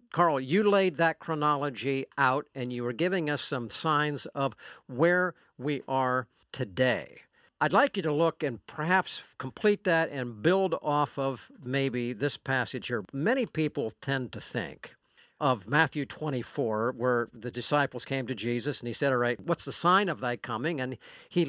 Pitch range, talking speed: 130-175 Hz, 175 wpm